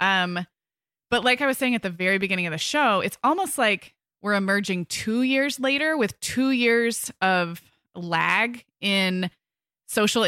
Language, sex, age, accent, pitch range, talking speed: English, female, 20-39, American, 180-240 Hz, 165 wpm